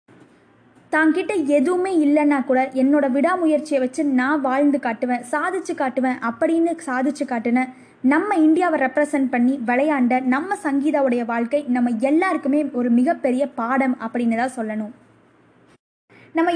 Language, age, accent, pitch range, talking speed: Tamil, 20-39, native, 245-300 Hz, 115 wpm